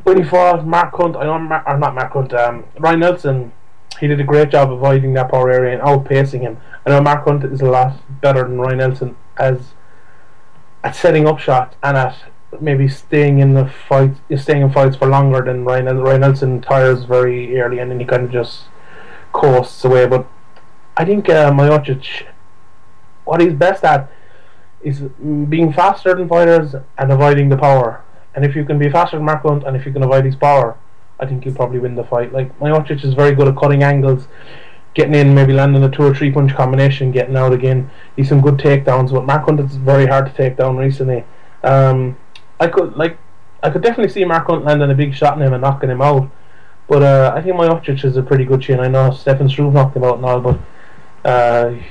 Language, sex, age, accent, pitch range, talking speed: English, male, 30-49, Irish, 130-145 Hz, 215 wpm